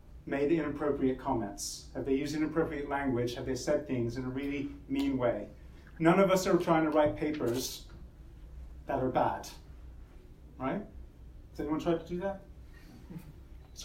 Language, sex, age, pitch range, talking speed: English, male, 30-49, 100-165 Hz, 155 wpm